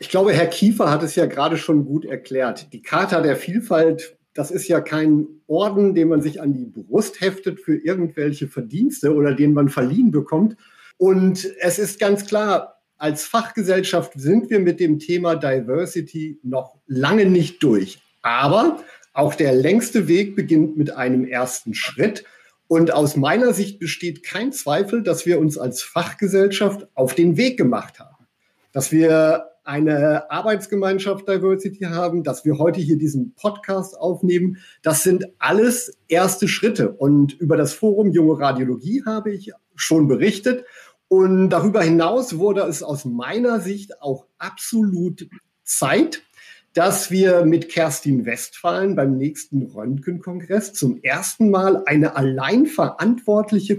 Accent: German